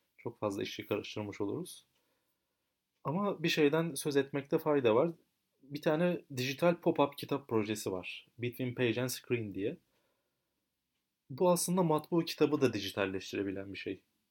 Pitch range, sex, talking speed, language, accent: 110-150 Hz, male, 135 wpm, Turkish, native